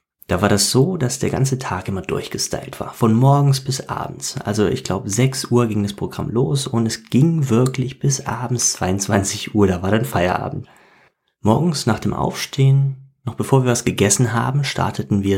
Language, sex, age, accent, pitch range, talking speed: German, male, 30-49, German, 95-130 Hz, 185 wpm